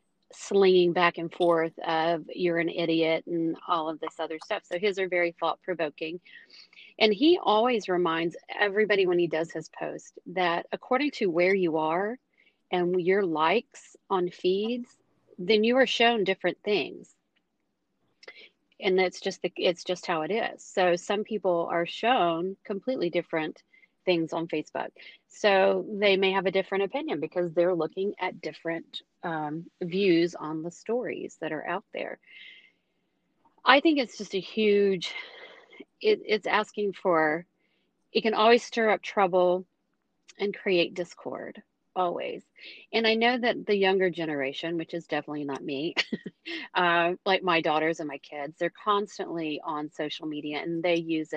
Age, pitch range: 40-59, 165-210 Hz